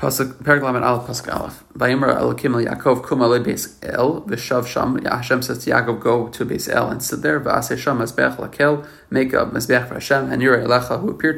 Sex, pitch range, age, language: male, 120-135 Hz, 30-49, English